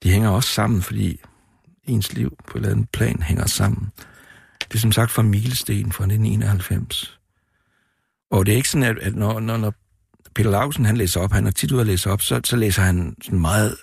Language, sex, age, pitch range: Danish, male, 60-79, 90-110 Hz